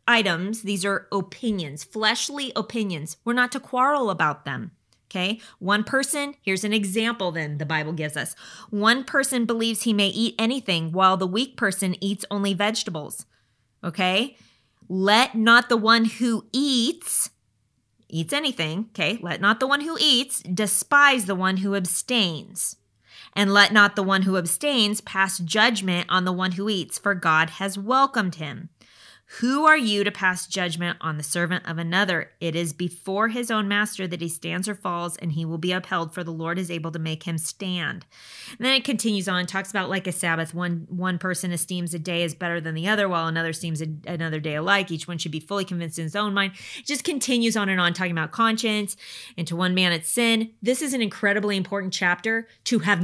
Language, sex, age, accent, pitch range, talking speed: English, female, 20-39, American, 170-215 Hz, 195 wpm